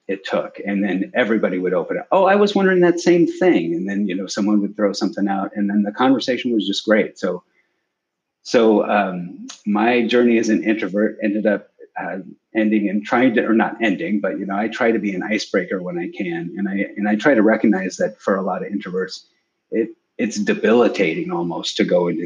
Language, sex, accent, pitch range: English, male, American, 100-120 Hz